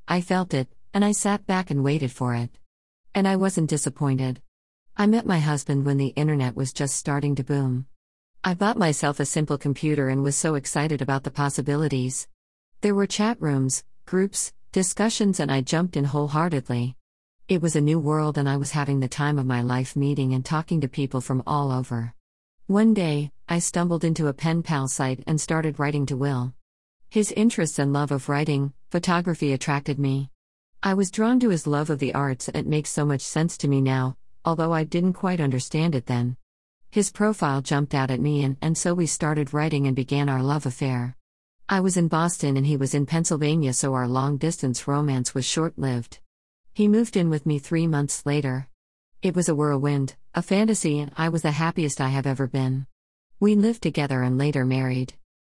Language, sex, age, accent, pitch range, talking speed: English, female, 50-69, American, 130-165 Hz, 195 wpm